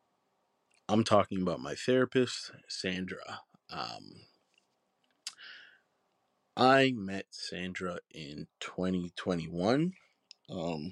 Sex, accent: male, American